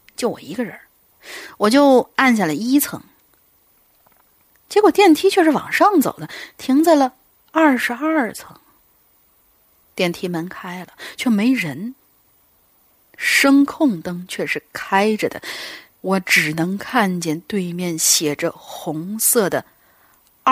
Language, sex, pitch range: Chinese, female, 190-295 Hz